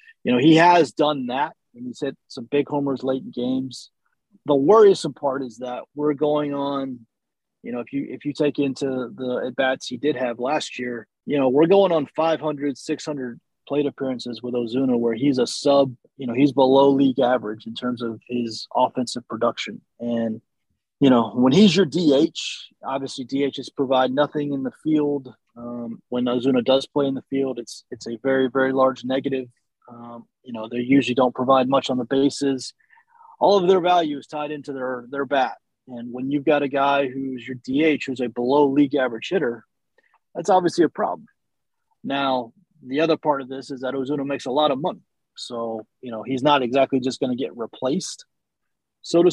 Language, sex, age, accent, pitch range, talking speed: English, male, 30-49, American, 125-150 Hz, 195 wpm